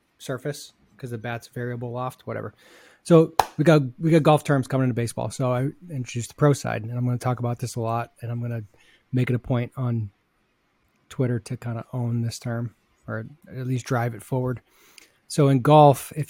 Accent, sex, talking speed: American, male, 215 wpm